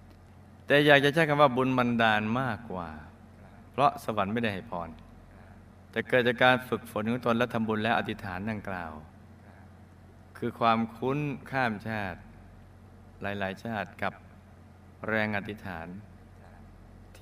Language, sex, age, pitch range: Thai, male, 20-39, 95-115 Hz